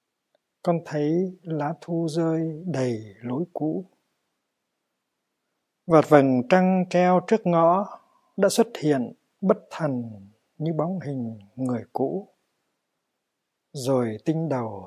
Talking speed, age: 110 wpm, 60-79